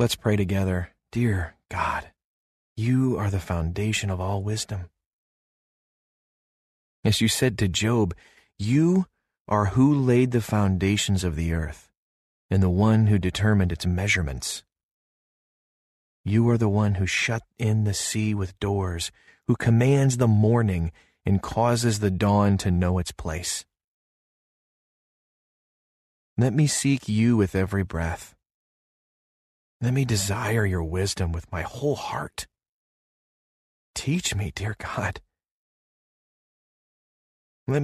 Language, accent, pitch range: English, American, 90-115 Hz